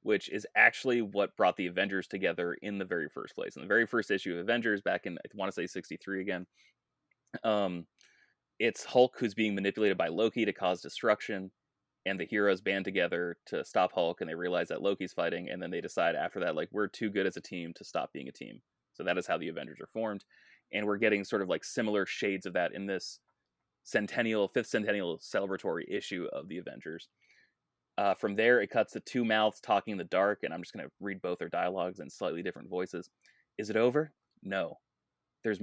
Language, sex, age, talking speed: English, male, 20-39, 215 wpm